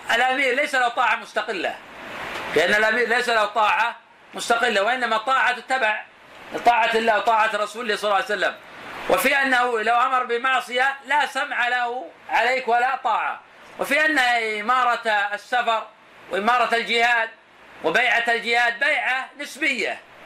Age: 40-59